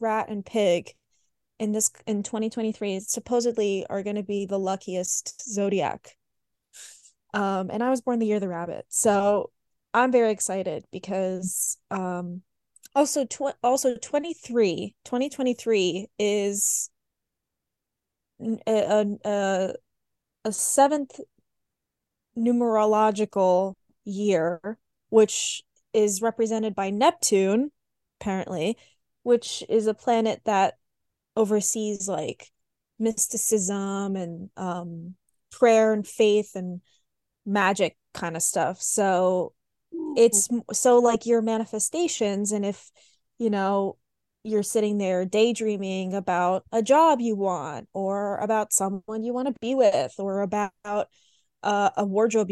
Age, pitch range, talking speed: 20-39, 195-230 Hz, 115 wpm